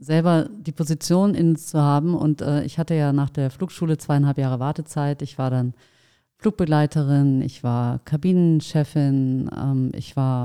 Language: German